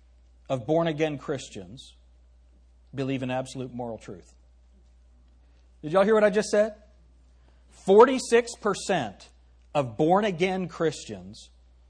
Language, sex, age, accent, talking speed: English, male, 50-69, American, 100 wpm